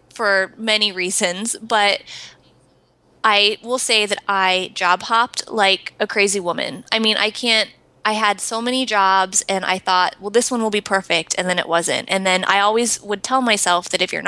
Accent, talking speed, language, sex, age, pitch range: American, 200 wpm, English, female, 20-39, 185-215 Hz